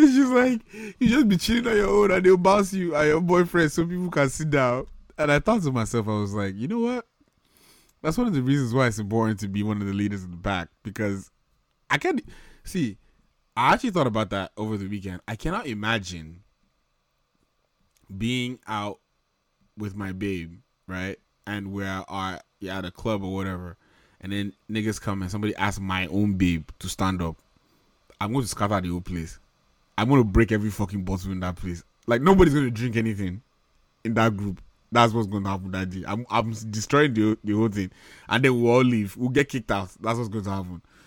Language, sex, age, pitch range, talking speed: English, male, 20-39, 100-135 Hz, 215 wpm